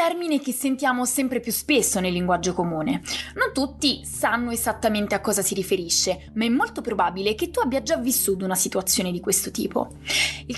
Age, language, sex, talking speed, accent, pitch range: 20-39, Italian, female, 180 wpm, native, 195-270 Hz